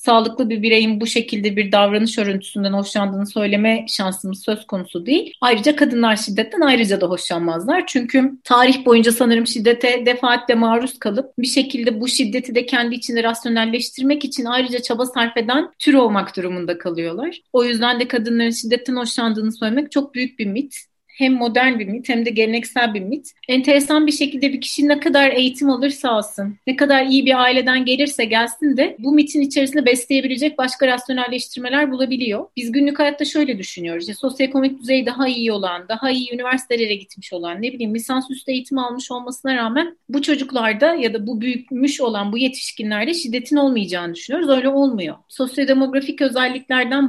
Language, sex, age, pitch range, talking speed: Turkish, female, 40-59, 225-270 Hz, 165 wpm